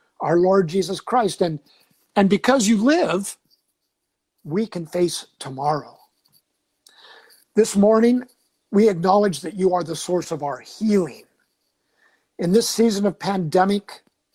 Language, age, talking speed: English, 50-69, 125 wpm